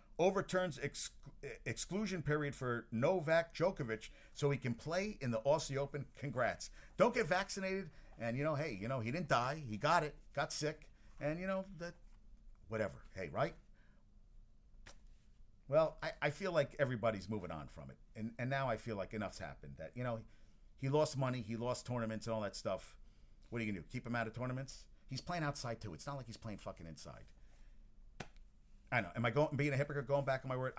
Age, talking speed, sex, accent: 50-69, 205 wpm, male, American